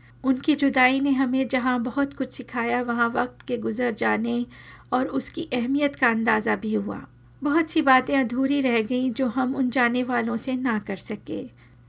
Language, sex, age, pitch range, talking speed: Hindi, female, 40-59, 225-265 Hz, 175 wpm